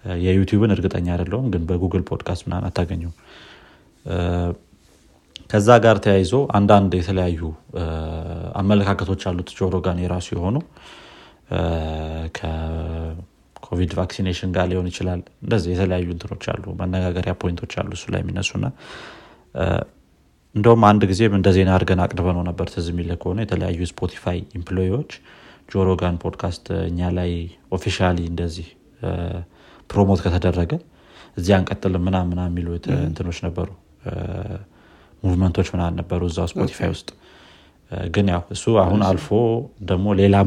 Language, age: Amharic, 30-49